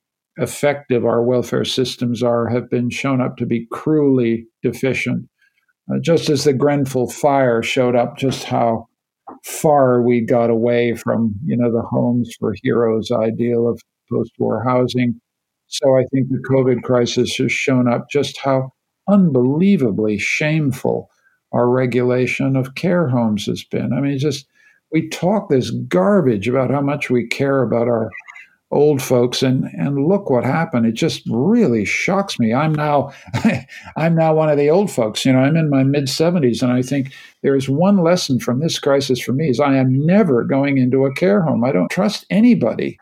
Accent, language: American, English